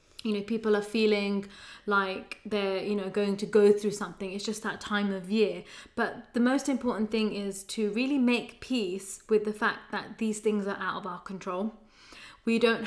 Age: 20-39